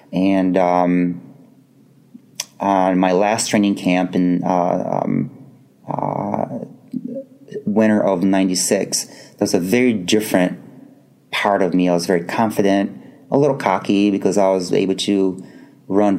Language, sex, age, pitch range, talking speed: English, male, 30-49, 90-105 Hz, 135 wpm